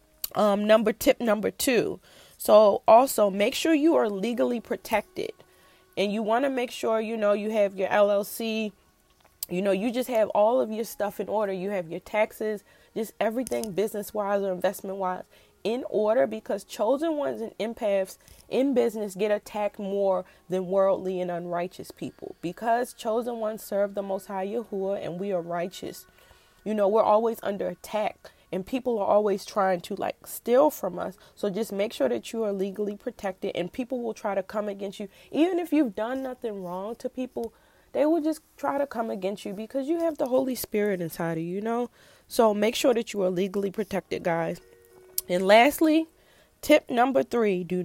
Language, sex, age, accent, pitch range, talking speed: English, female, 20-39, American, 190-235 Hz, 185 wpm